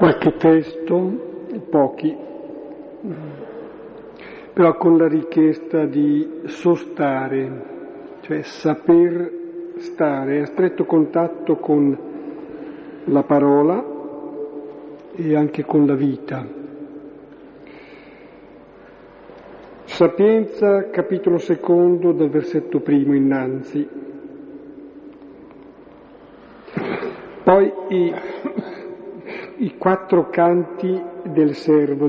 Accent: native